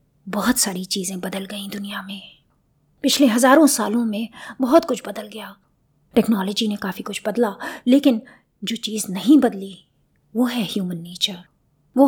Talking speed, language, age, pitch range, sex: 150 wpm, Hindi, 30-49, 195-250 Hz, female